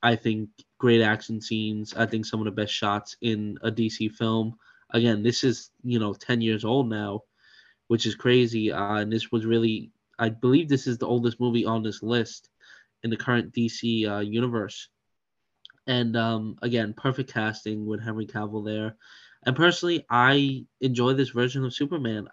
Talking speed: 175 wpm